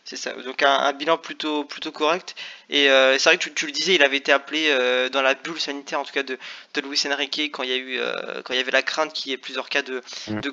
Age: 20-39